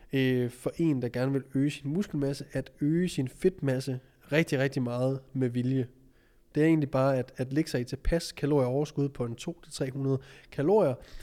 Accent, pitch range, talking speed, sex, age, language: native, 125-145 Hz, 175 wpm, male, 20-39, Danish